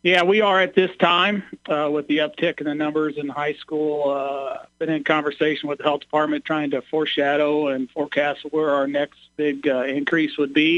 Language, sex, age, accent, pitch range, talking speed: English, male, 50-69, American, 145-160 Hz, 205 wpm